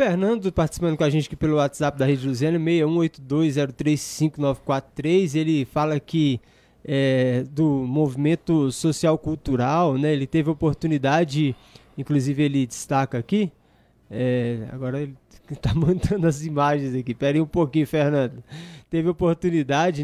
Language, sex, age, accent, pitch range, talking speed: Portuguese, male, 20-39, Brazilian, 140-175 Hz, 125 wpm